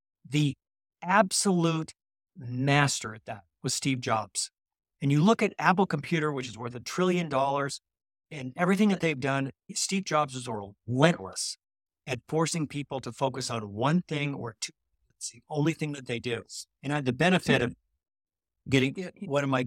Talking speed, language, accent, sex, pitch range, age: 170 wpm, English, American, male, 115-145 Hz, 50-69